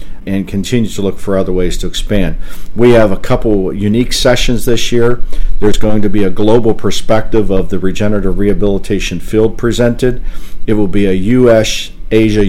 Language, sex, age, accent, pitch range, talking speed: English, male, 50-69, American, 95-115 Hz, 175 wpm